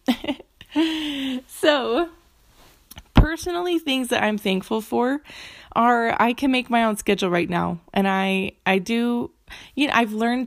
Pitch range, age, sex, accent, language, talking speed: 190-255 Hz, 20-39, female, American, English, 140 wpm